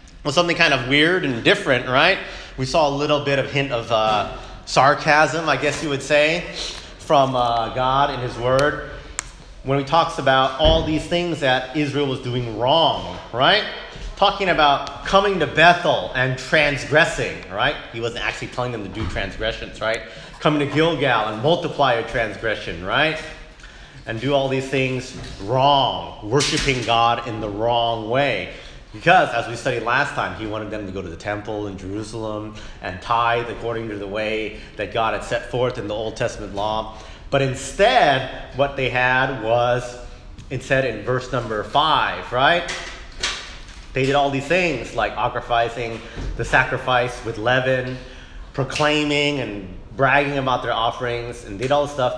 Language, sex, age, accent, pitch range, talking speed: English, male, 30-49, American, 115-145 Hz, 165 wpm